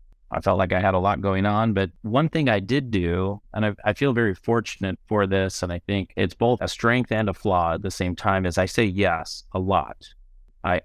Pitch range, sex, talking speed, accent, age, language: 90-110 Hz, male, 245 wpm, American, 30-49, English